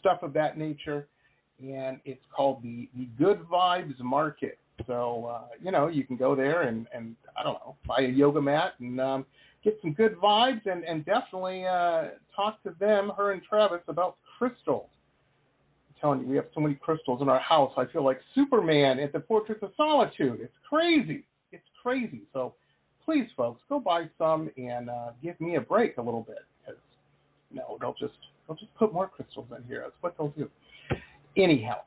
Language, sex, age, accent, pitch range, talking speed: English, male, 40-59, American, 135-220 Hz, 200 wpm